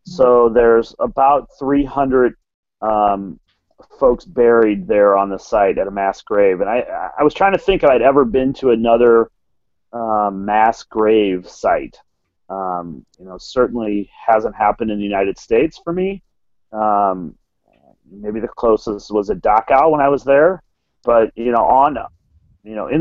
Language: English